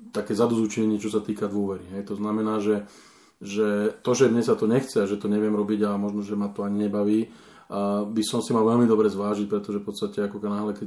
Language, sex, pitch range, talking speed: Slovak, male, 105-115 Hz, 230 wpm